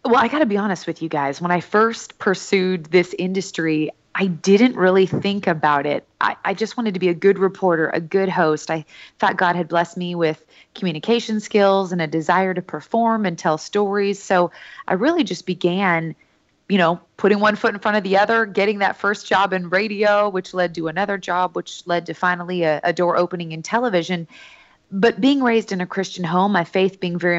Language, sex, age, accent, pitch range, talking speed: English, female, 20-39, American, 175-210 Hz, 210 wpm